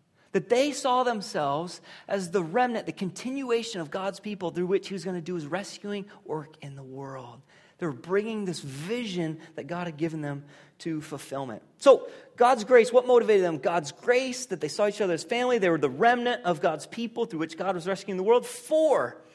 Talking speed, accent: 210 wpm, American